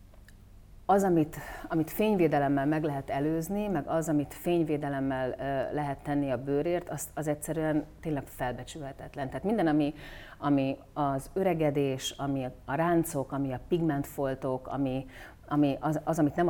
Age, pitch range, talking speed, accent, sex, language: 40-59, 130-160 Hz, 140 wpm, Finnish, female, English